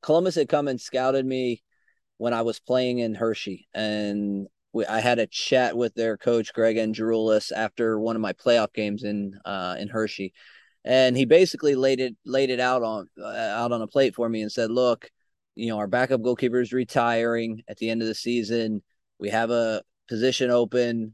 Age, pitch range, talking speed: 20-39, 110-130 Hz, 200 wpm